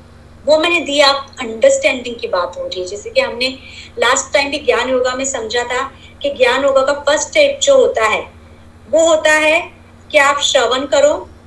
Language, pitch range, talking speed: Hindi, 260-350 Hz, 190 wpm